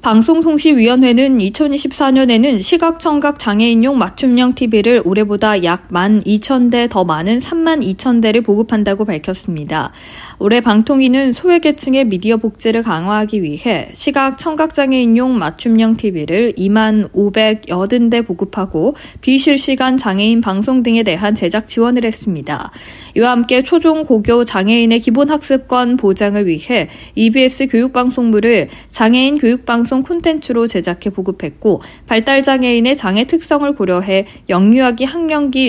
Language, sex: Korean, female